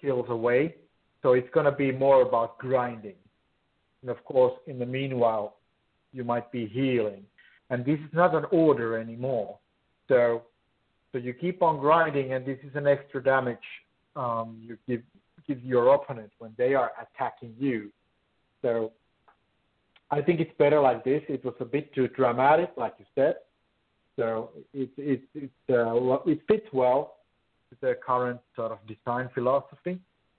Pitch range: 115-145 Hz